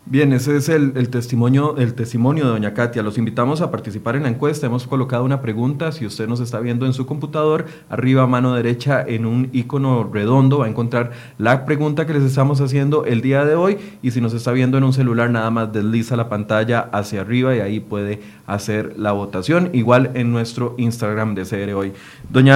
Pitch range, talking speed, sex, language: 115-150 Hz, 215 wpm, male, Spanish